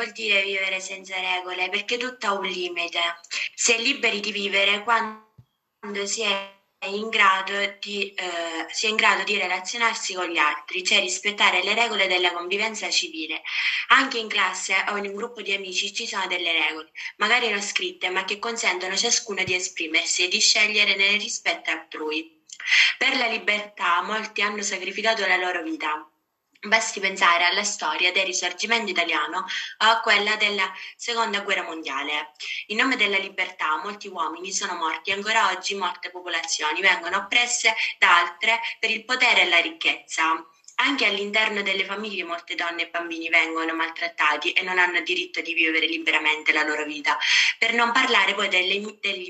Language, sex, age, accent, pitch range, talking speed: Italian, female, 20-39, native, 175-220 Hz, 160 wpm